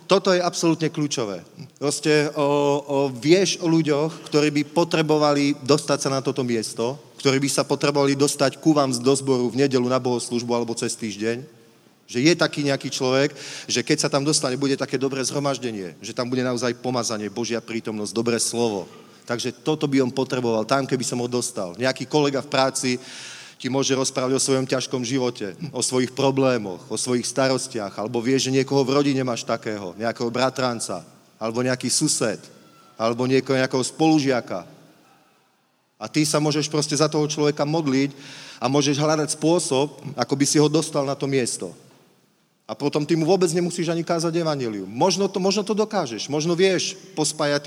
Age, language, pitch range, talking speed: 40-59, Slovak, 125-150 Hz, 175 wpm